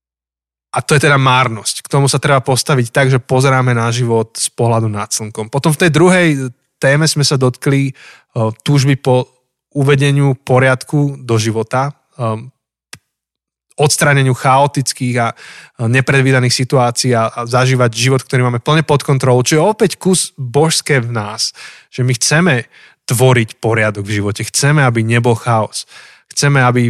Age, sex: 20-39, male